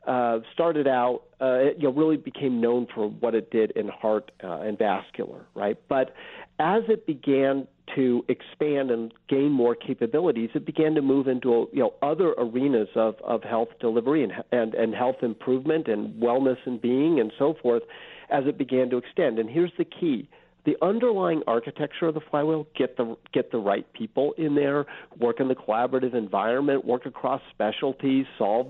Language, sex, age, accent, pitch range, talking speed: English, male, 50-69, American, 120-140 Hz, 180 wpm